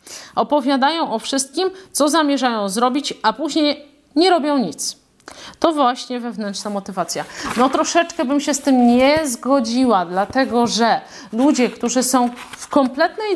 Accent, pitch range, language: native, 215-270 Hz, Polish